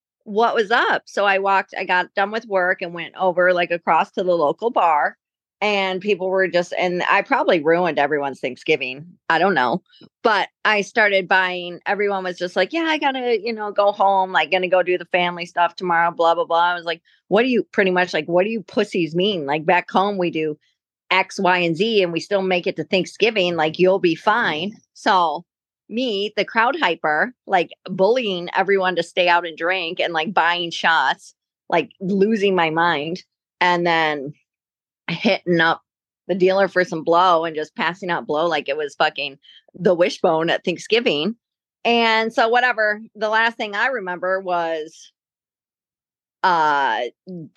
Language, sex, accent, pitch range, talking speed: English, female, American, 170-205 Hz, 185 wpm